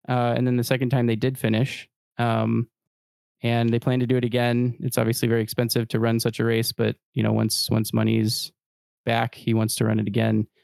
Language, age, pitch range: English, 20-39, 110-130 Hz